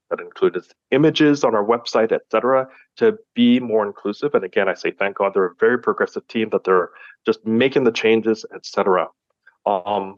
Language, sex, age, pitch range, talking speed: English, male, 30-49, 110-145 Hz, 190 wpm